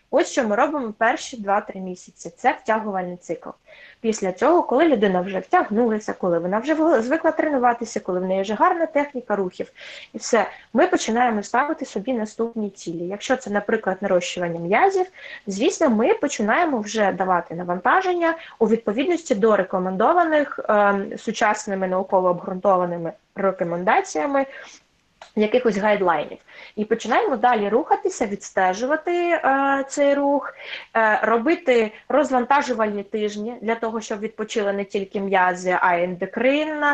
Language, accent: Ukrainian, native